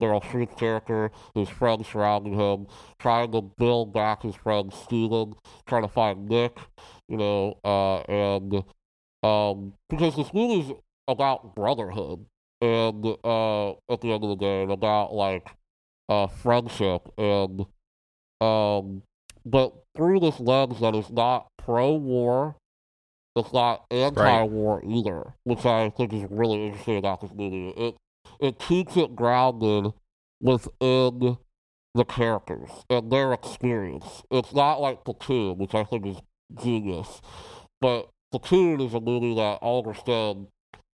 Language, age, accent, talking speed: English, 40-59, American, 140 wpm